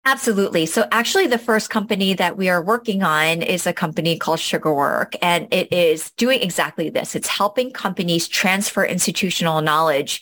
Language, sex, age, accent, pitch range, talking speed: English, female, 30-49, American, 165-220 Hz, 165 wpm